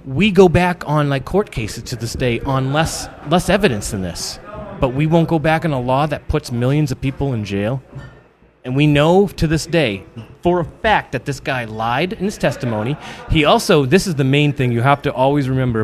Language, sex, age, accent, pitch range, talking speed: English, male, 30-49, American, 130-165 Hz, 225 wpm